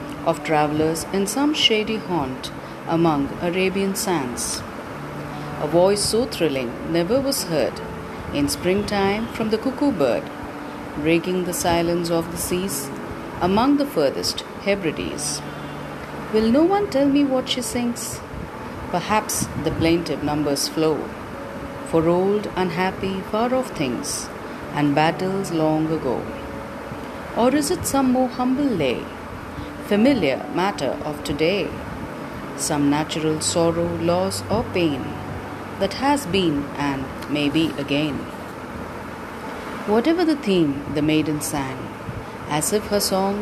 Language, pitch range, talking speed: English, 155-225 Hz, 120 wpm